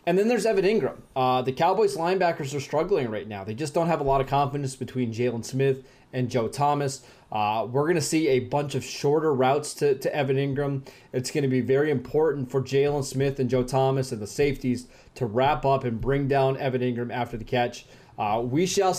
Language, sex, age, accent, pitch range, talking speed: English, male, 20-39, American, 130-155 Hz, 220 wpm